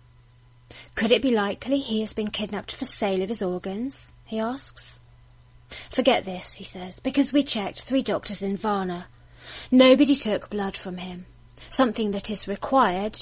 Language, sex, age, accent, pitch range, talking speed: English, female, 30-49, British, 165-225 Hz, 160 wpm